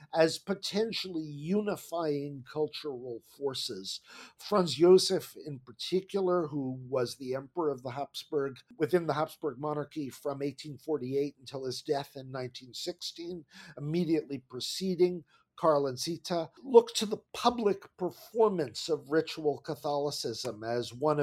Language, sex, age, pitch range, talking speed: English, male, 50-69, 130-170 Hz, 120 wpm